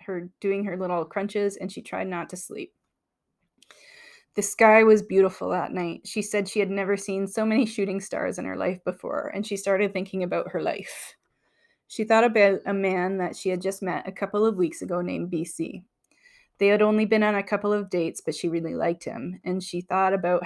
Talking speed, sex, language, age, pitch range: 215 wpm, female, English, 20-39, 180-210 Hz